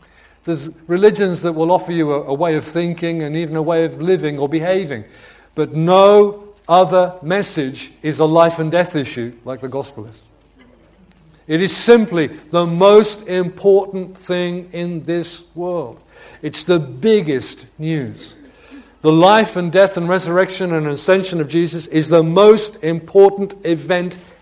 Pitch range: 135-185 Hz